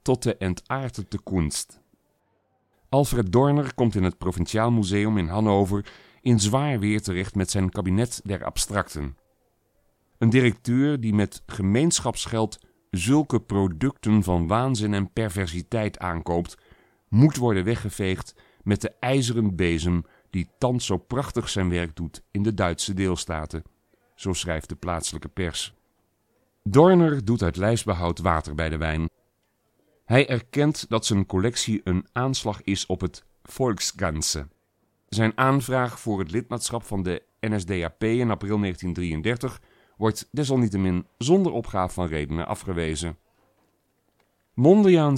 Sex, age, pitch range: male, 40-59, 90-120 Hz